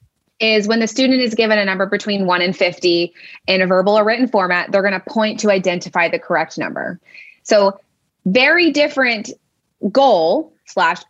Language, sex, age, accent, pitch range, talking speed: English, female, 20-39, American, 180-225 Hz, 170 wpm